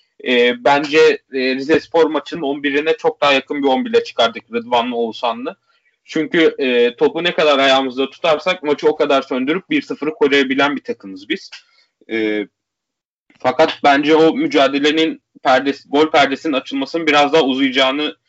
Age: 30-49